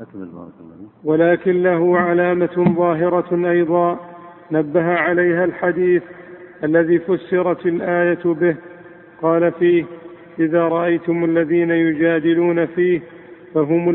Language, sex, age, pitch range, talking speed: Arabic, male, 50-69, 165-175 Hz, 85 wpm